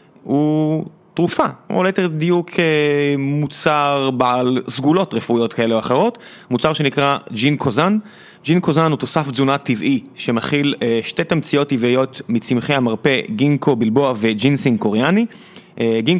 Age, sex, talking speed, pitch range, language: 30-49, male, 120 wpm, 125-160 Hz, Hebrew